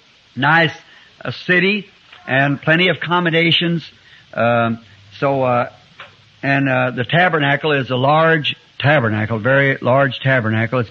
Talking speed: 125 wpm